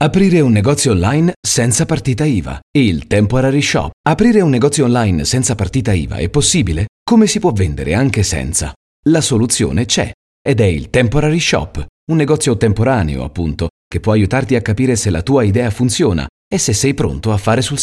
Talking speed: 180 wpm